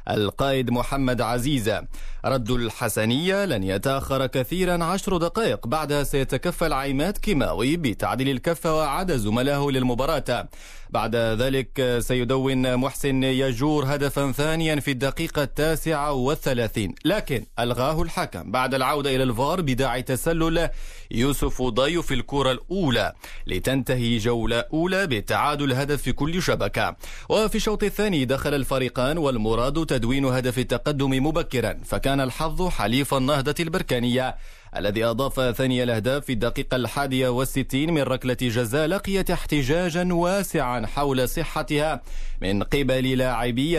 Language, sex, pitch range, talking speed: Arabic, male, 125-155 Hz, 115 wpm